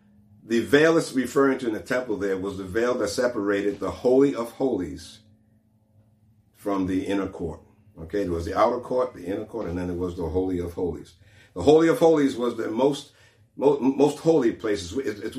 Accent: American